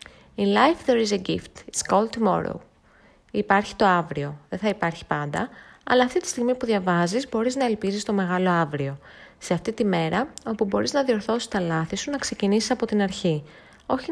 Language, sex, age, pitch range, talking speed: Greek, female, 20-39, 165-225 Hz, 190 wpm